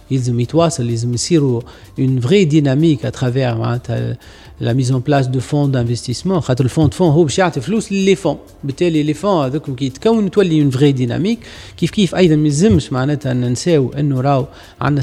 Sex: male